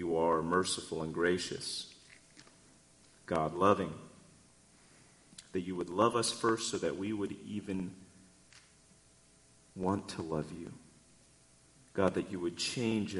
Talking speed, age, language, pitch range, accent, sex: 120 wpm, 40-59, English, 80-105 Hz, American, male